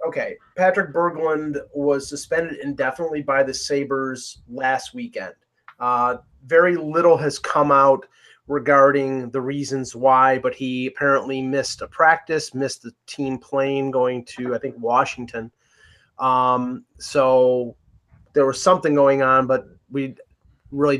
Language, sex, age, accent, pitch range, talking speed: English, male, 30-49, American, 125-145 Hz, 130 wpm